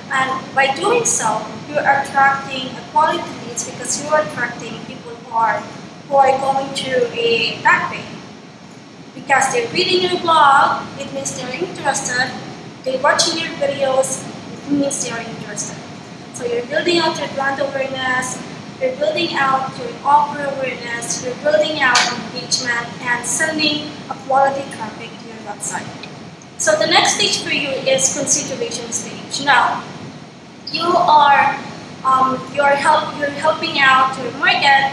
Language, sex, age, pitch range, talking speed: English, female, 20-39, 235-285 Hz, 150 wpm